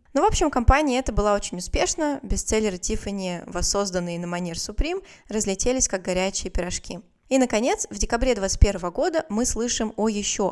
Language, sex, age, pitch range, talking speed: Russian, female, 20-39, 185-245 Hz, 160 wpm